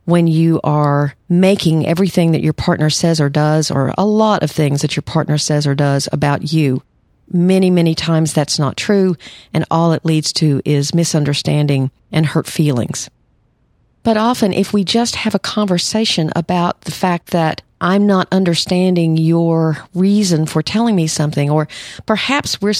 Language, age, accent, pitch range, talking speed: English, 50-69, American, 155-195 Hz, 170 wpm